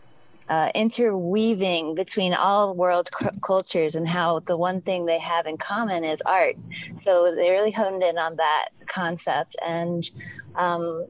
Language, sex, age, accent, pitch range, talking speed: English, female, 20-39, American, 170-200 Hz, 145 wpm